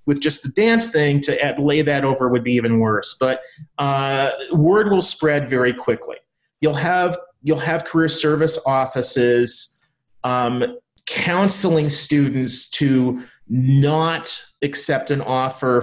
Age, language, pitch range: 40-59, English, 120-150 Hz